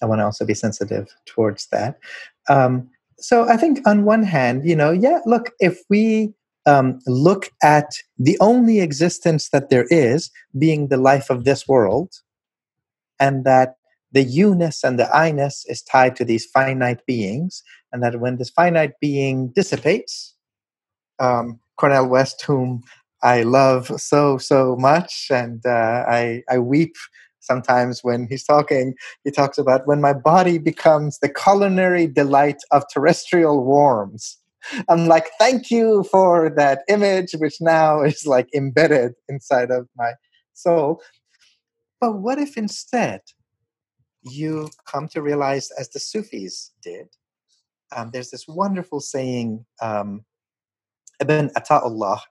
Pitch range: 125-170 Hz